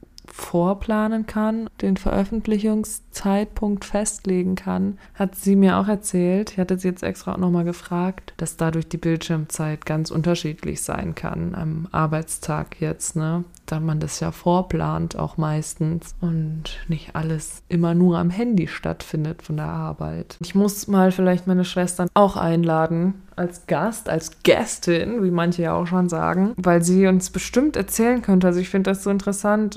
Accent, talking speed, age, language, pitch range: German, 160 wpm, 20-39, German, 170-205 Hz